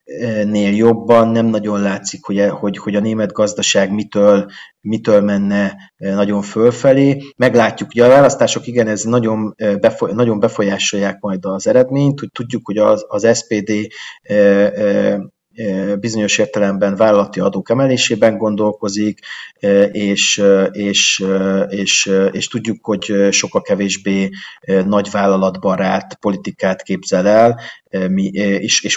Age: 30-49